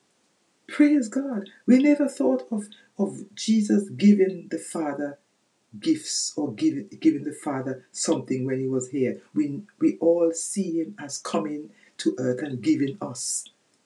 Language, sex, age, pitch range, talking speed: English, female, 60-79, 150-245 Hz, 145 wpm